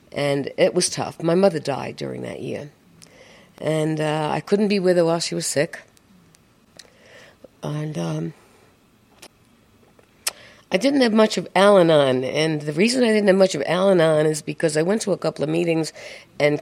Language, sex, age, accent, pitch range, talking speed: English, female, 60-79, American, 145-175 Hz, 175 wpm